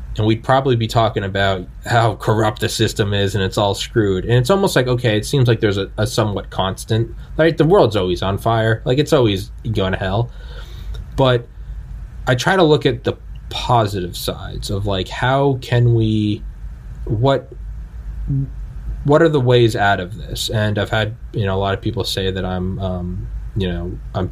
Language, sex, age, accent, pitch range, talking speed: English, male, 20-39, American, 95-120 Hz, 190 wpm